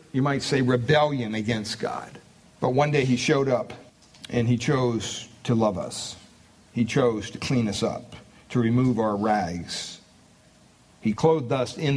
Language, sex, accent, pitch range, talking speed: English, male, American, 115-150 Hz, 160 wpm